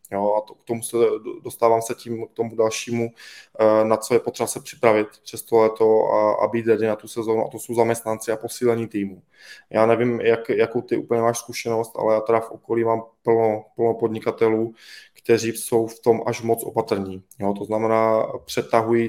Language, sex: Czech, male